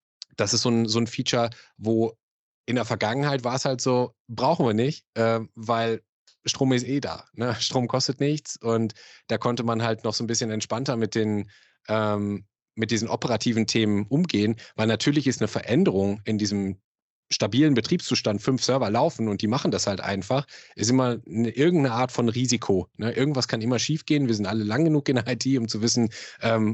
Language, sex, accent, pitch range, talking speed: German, male, German, 105-130 Hz, 200 wpm